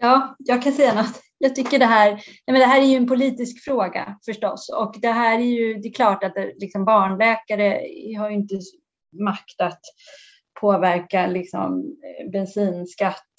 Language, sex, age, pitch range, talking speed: Swedish, female, 30-49, 195-240 Hz, 170 wpm